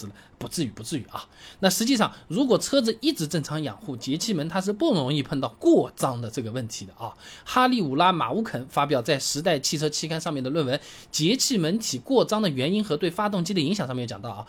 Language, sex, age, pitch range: Chinese, male, 20-39, 140-225 Hz